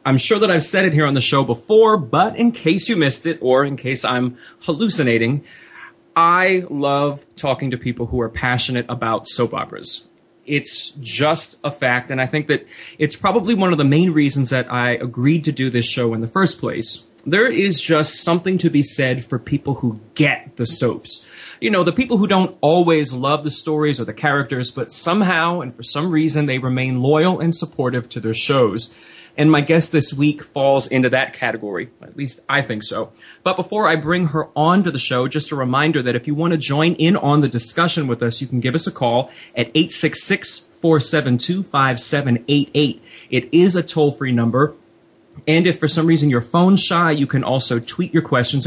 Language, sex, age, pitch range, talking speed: English, male, 20-39, 125-165 Hz, 205 wpm